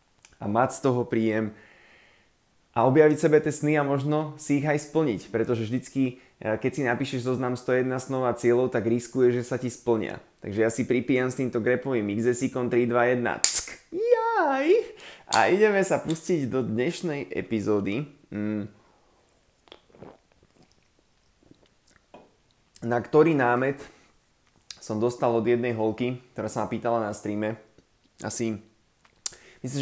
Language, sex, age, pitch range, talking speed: Slovak, male, 20-39, 110-140 Hz, 130 wpm